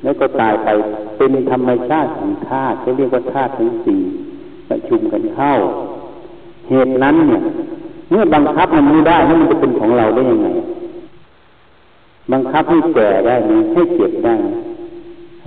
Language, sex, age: Thai, male, 60-79